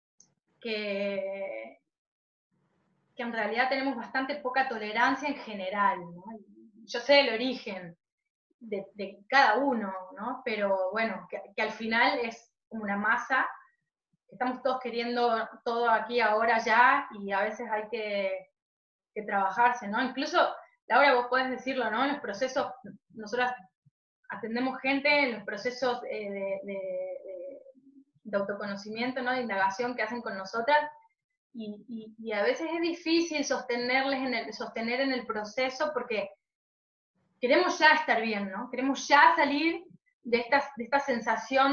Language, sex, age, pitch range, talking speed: Spanish, female, 20-39, 210-270 Hz, 140 wpm